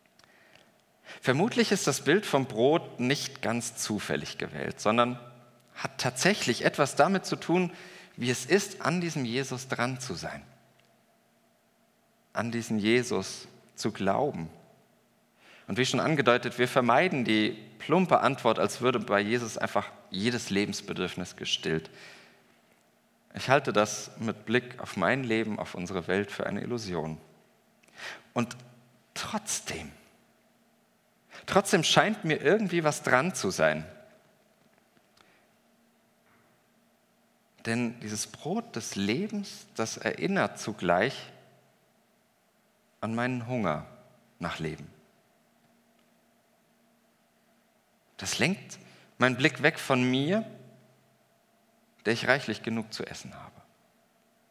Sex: male